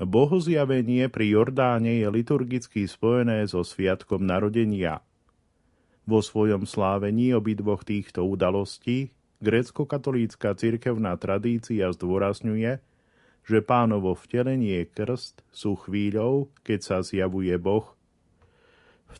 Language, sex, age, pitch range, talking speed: Slovak, male, 40-59, 100-120 Hz, 95 wpm